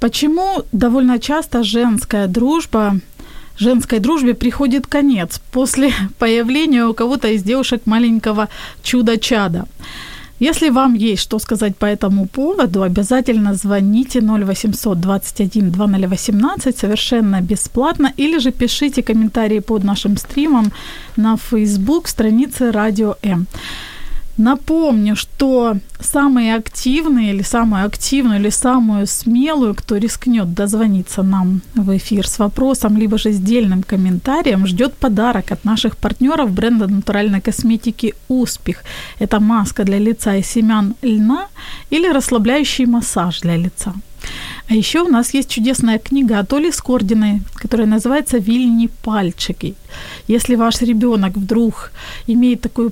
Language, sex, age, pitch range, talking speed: Ukrainian, female, 20-39, 210-255 Hz, 120 wpm